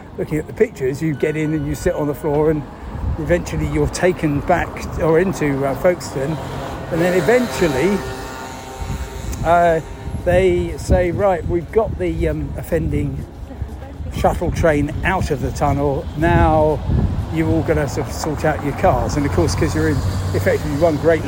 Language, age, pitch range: English, 50-69, 130-170 Hz